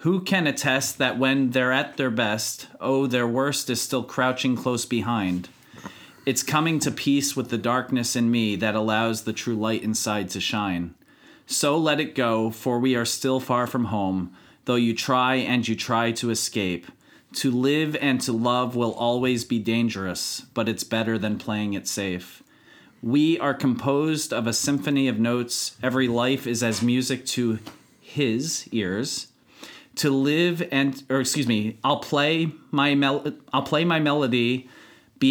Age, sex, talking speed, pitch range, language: 30-49, male, 170 wpm, 115-135 Hz, English